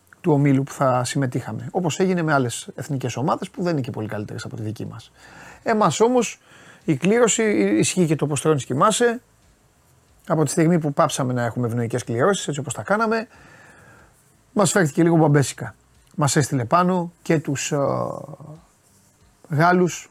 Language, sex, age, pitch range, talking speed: Greek, male, 30-49, 125-165 Hz, 165 wpm